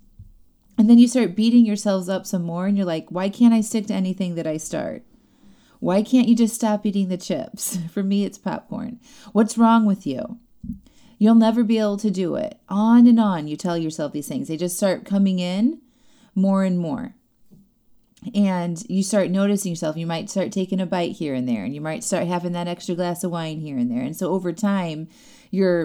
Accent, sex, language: American, female, English